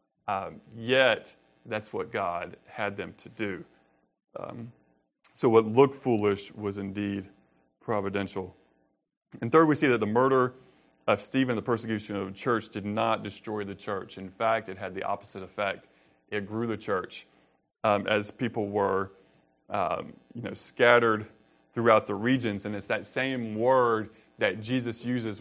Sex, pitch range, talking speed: male, 100-115 Hz, 155 wpm